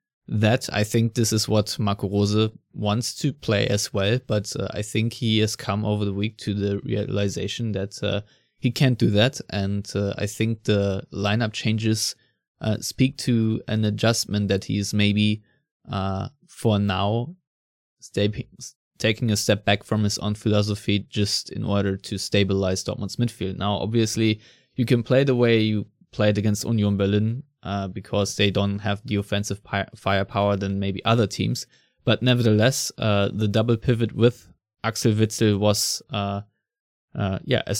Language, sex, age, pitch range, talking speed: English, male, 20-39, 100-115 Hz, 165 wpm